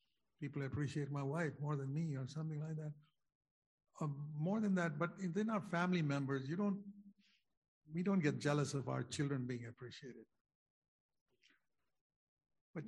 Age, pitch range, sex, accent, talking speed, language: 60-79, 135-175 Hz, male, Indian, 150 wpm, English